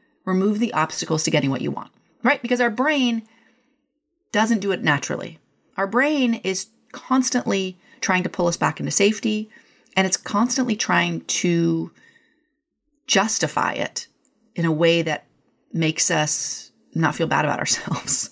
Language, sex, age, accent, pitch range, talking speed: English, female, 30-49, American, 175-240 Hz, 145 wpm